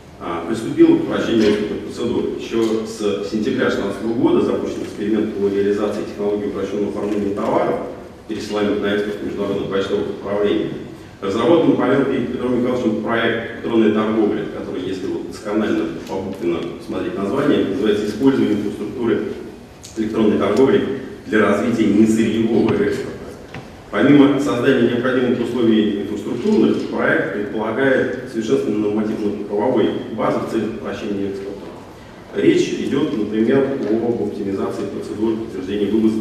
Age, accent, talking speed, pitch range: 40-59, native, 115 wpm, 100-115 Hz